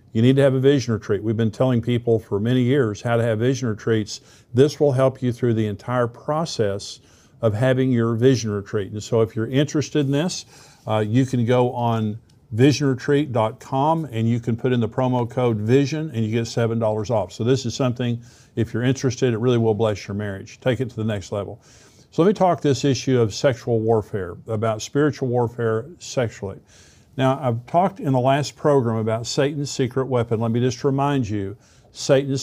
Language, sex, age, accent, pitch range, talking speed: English, male, 50-69, American, 115-135 Hz, 200 wpm